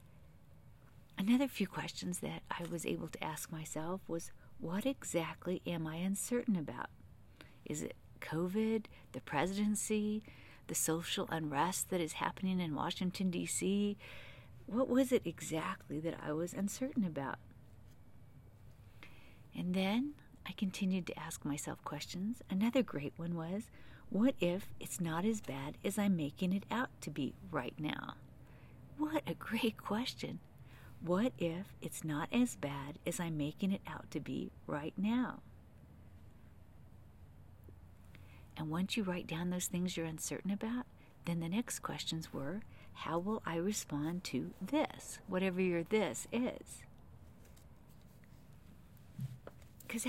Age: 50-69